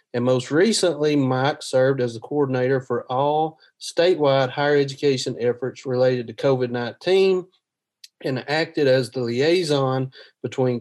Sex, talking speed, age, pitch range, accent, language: male, 130 wpm, 30-49, 125-155 Hz, American, English